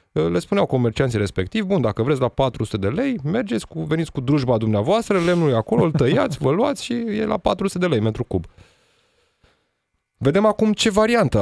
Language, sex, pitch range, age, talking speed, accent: Romanian, male, 105-145 Hz, 20-39, 190 wpm, native